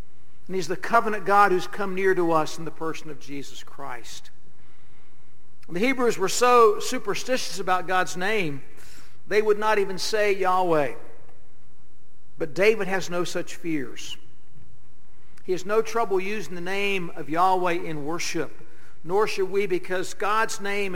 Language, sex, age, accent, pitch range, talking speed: English, male, 60-79, American, 160-210 Hz, 150 wpm